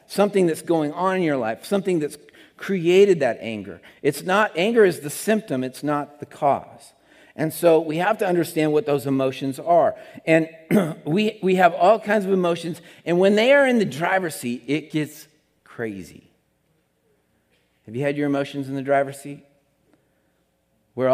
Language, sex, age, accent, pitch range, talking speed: English, male, 50-69, American, 130-165 Hz, 175 wpm